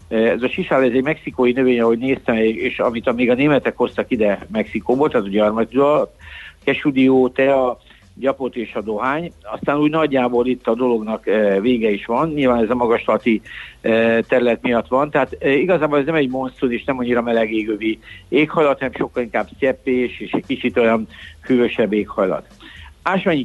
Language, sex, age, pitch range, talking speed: Hungarian, male, 60-79, 115-140 Hz, 170 wpm